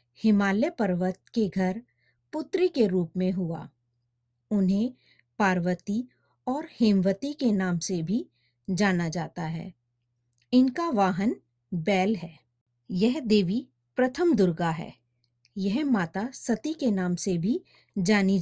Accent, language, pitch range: native, Hindi, 175-240 Hz